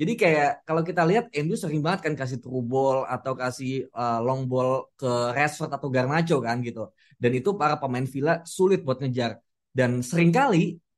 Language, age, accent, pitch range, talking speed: Indonesian, 20-39, native, 125-170 Hz, 175 wpm